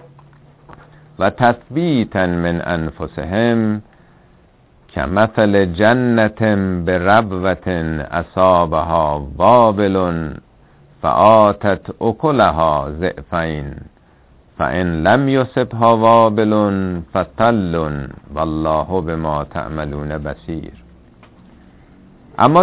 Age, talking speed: 50-69, 65 wpm